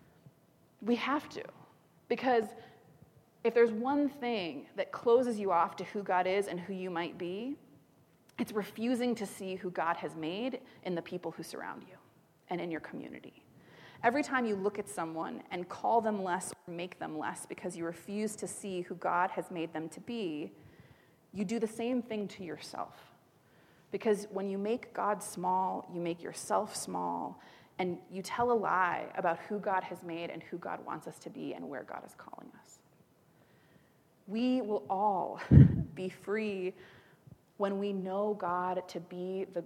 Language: English